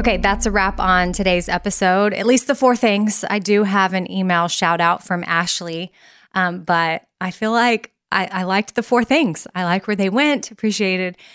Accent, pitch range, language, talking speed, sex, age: American, 185-225 Hz, English, 200 wpm, female, 20-39